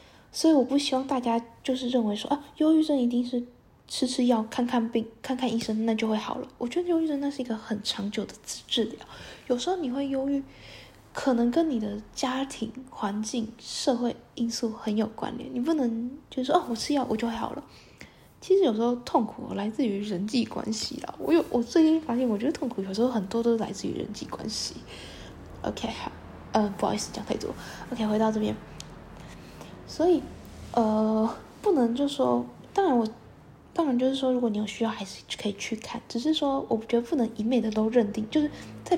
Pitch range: 220-265 Hz